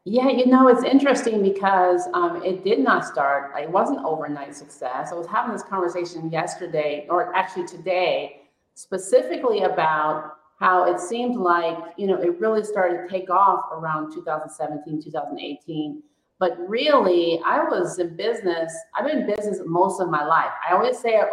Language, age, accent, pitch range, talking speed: English, 40-59, American, 165-200 Hz, 170 wpm